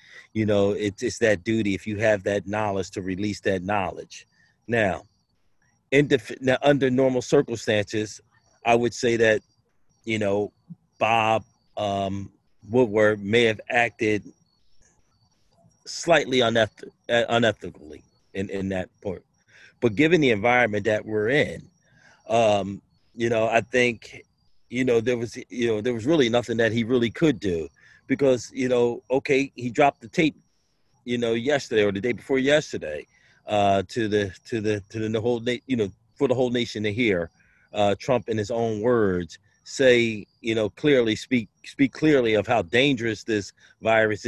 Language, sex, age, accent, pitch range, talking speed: English, male, 40-59, American, 105-125 Hz, 160 wpm